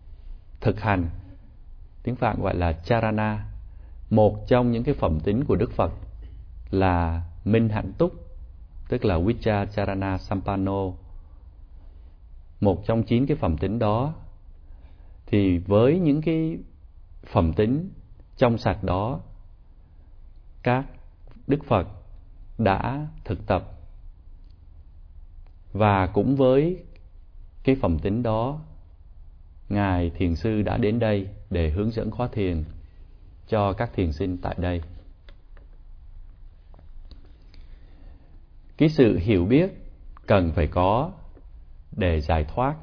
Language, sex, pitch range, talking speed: Vietnamese, male, 80-110 Hz, 115 wpm